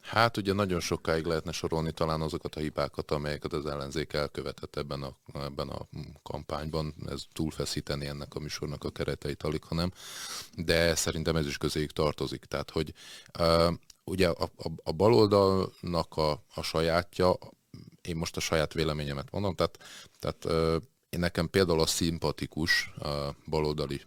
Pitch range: 75-85 Hz